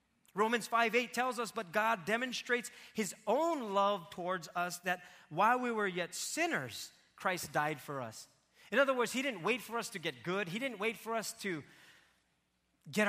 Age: 30-49